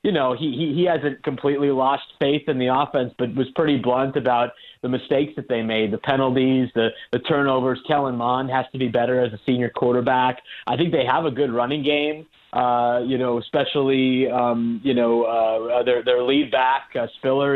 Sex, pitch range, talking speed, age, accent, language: male, 125-145 Hz, 200 wpm, 30-49, American, English